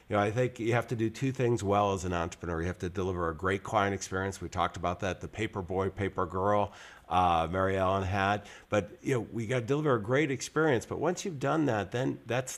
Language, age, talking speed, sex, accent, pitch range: English, 50-69, 250 wpm, male, American, 95-115 Hz